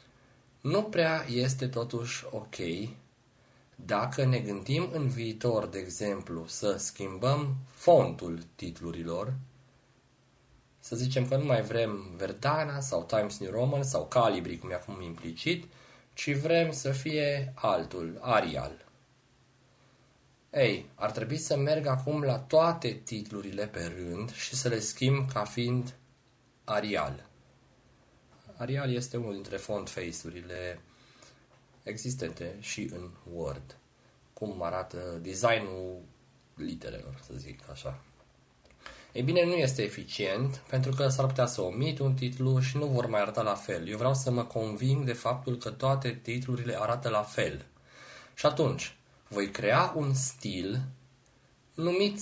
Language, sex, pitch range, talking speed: Romanian, male, 105-135 Hz, 130 wpm